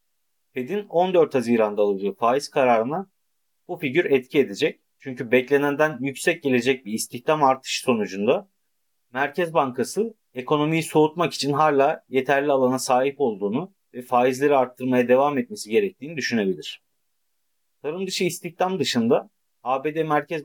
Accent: native